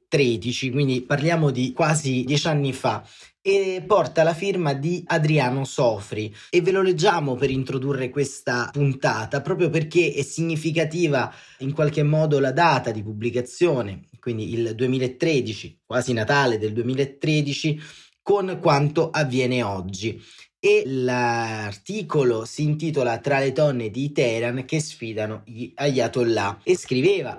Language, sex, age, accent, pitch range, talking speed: Italian, male, 30-49, native, 115-145 Hz, 130 wpm